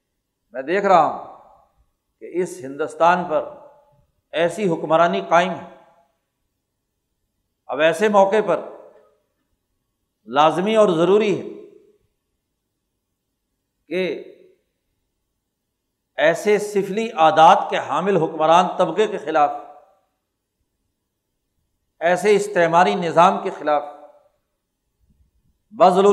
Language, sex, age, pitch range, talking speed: Urdu, male, 60-79, 165-210 Hz, 85 wpm